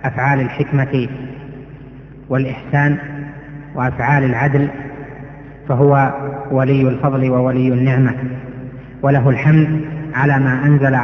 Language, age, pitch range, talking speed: Arabic, 30-49, 130-140 Hz, 80 wpm